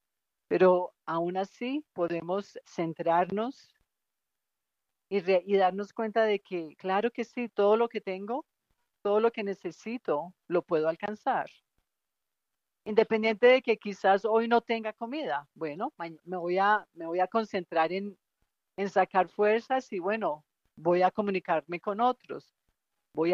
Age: 40-59